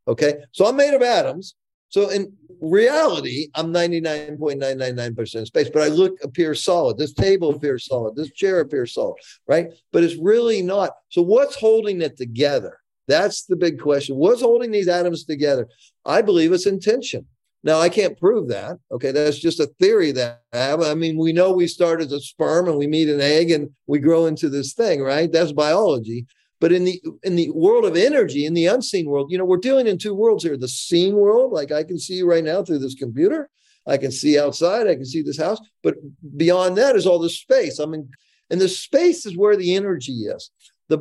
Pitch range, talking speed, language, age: 150-220 Hz, 210 wpm, English, 50-69